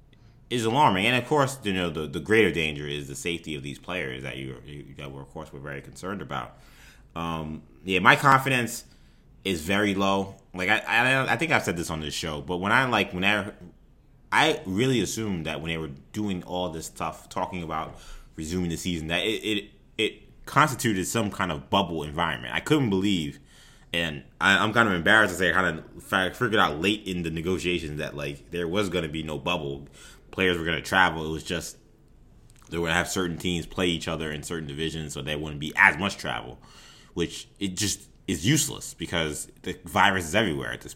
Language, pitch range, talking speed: English, 75-95 Hz, 215 wpm